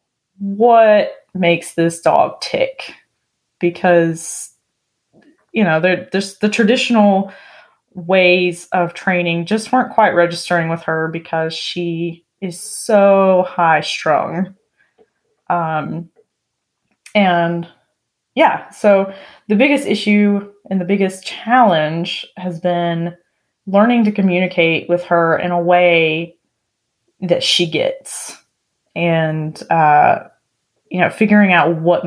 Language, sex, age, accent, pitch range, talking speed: English, female, 20-39, American, 170-205 Hz, 110 wpm